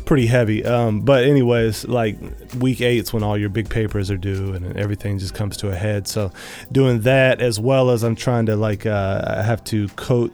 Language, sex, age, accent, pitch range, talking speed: English, male, 20-39, American, 100-120 Hz, 215 wpm